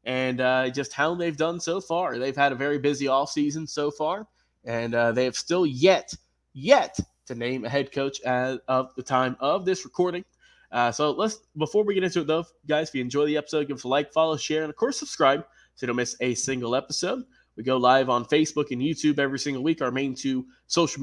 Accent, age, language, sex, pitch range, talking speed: American, 20-39, English, male, 130-175 Hz, 230 wpm